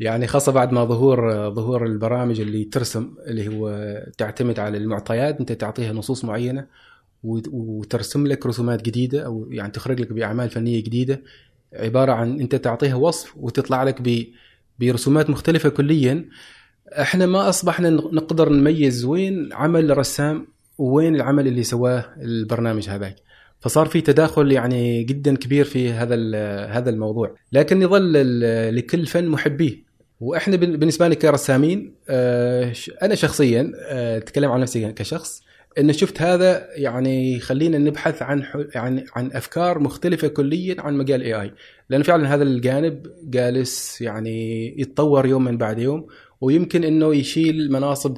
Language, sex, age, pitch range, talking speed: Arabic, male, 20-39, 115-150 Hz, 135 wpm